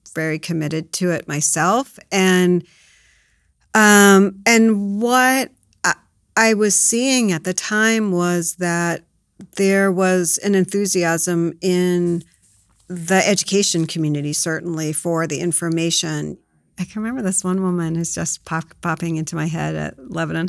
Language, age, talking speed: English, 40-59, 130 wpm